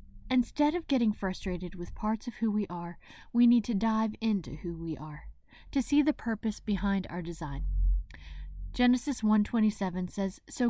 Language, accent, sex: English, American, female